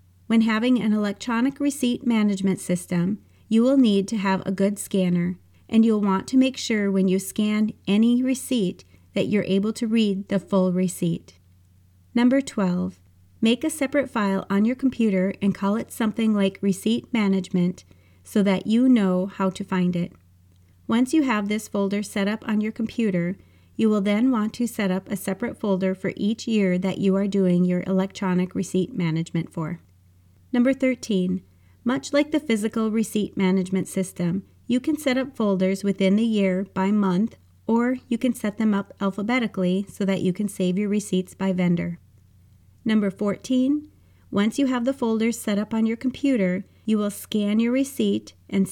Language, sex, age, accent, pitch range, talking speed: English, female, 30-49, American, 185-225 Hz, 175 wpm